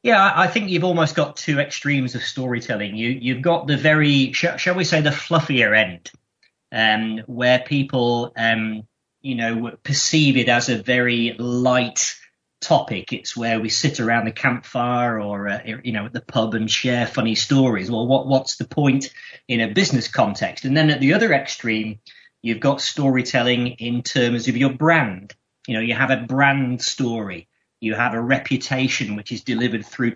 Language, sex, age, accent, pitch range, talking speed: English, male, 30-49, British, 115-135 Hz, 180 wpm